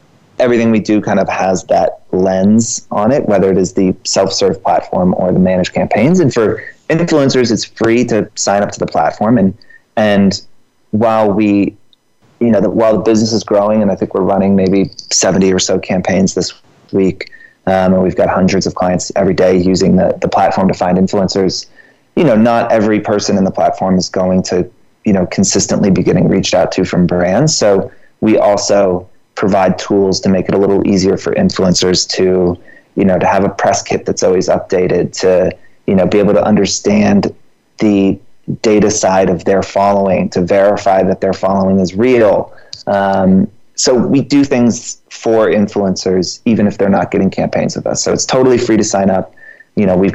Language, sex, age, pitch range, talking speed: English, male, 30-49, 95-110 Hz, 195 wpm